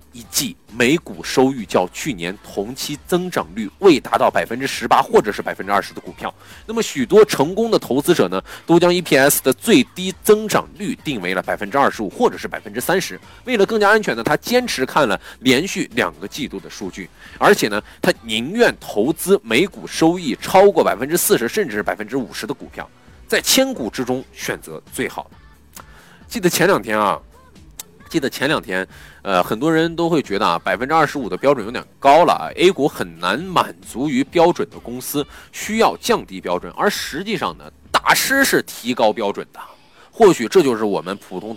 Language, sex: Chinese, male